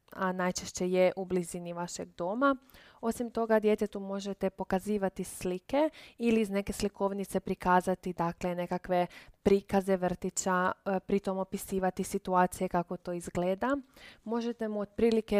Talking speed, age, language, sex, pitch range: 120 wpm, 20-39, Croatian, female, 185-215 Hz